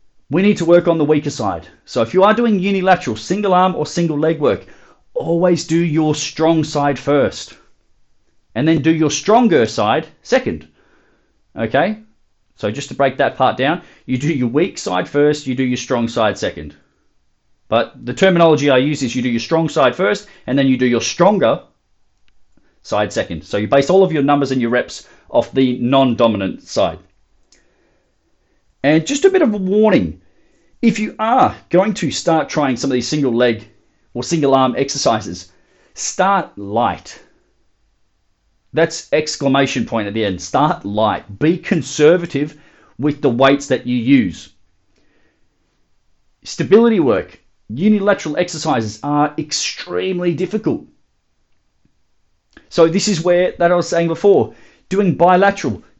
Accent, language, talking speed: Australian, English, 155 wpm